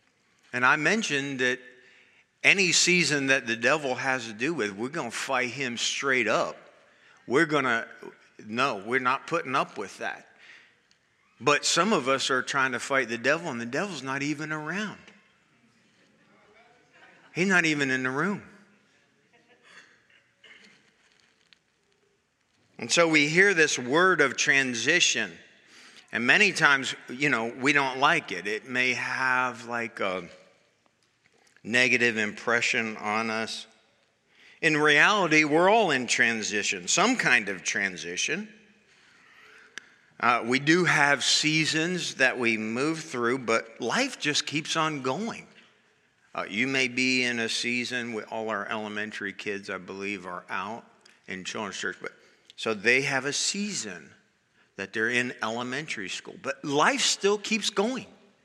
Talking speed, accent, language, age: 140 wpm, American, English, 50-69